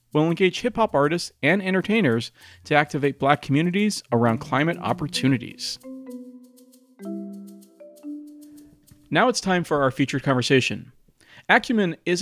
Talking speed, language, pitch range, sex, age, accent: 115 wpm, English, 135-185 Hz, male, 40-59, American